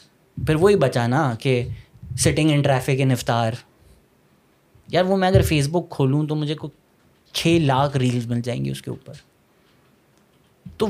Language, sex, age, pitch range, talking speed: Urdu, male, 20-39, 125-160 Hz, 155 wpm